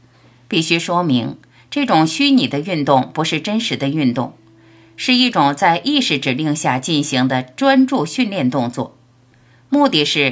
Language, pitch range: Chinese, 130-185 Hz